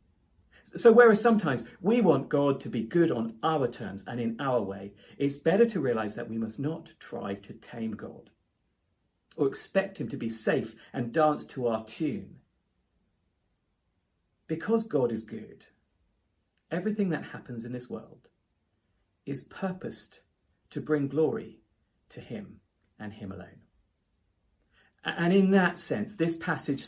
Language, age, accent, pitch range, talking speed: English, 40-59, British, 110-170 Hz, 145 wpm